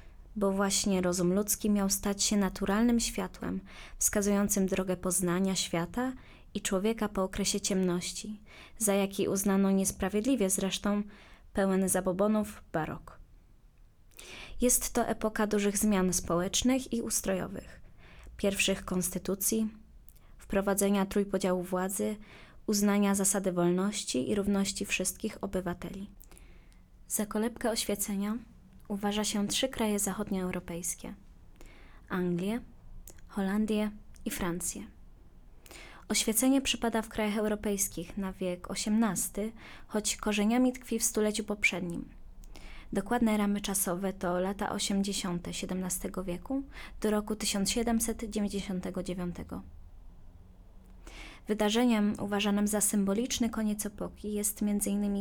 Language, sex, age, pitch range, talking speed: Polish, female, 20-39, 185-215 Hz, 100 wpm